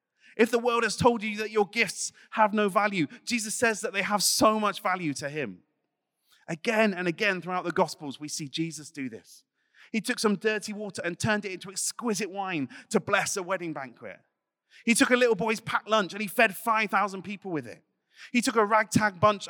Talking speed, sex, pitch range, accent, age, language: 210 wpm, male, 165-215 Hz, British, 30-49, English